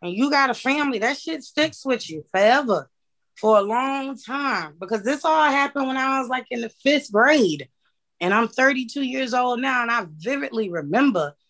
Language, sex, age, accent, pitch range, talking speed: English, female, 20-39, American, 215-275 Hz, 195 wpm